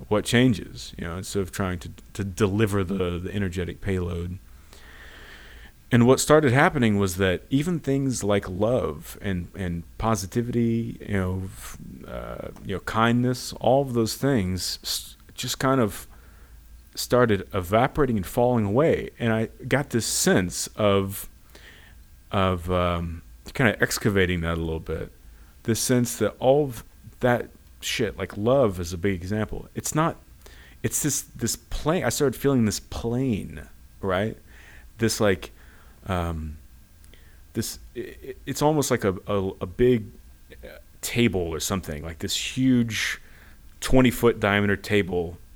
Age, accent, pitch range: 30-49, American, 85-115 Hz